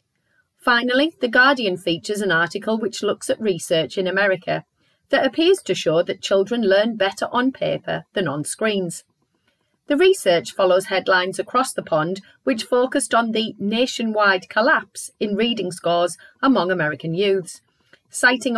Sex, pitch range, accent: female, 185-255 Hz, British